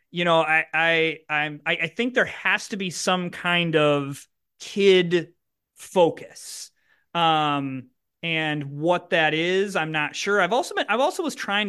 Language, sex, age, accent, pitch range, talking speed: English, male, 30-49, American, 150-200 Hz, 160 wpm